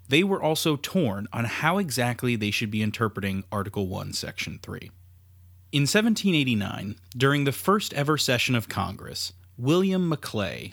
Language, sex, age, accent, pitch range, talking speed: English, male, 30-49, American, 95-155 Hz, 140 wpm